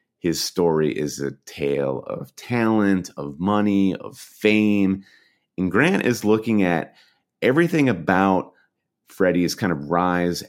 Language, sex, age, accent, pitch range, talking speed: English, male, 30-49, American, 75-95 Hz, 125 wpm